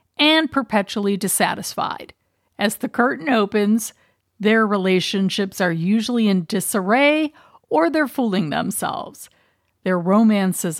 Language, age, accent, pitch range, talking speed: English, 50-69, American, 190-255 Hz, 105 wpm